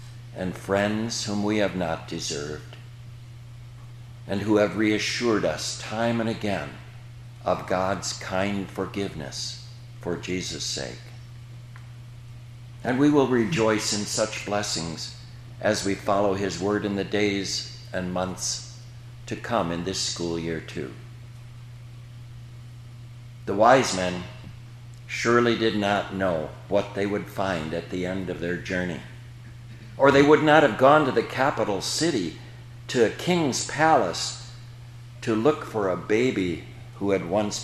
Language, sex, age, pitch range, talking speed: English, male, 60-79, 105-120 Hz, 135 wpm